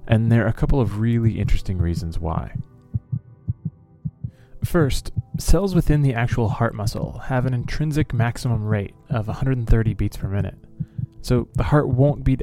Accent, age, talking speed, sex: American, 30-49, 155 wpm, male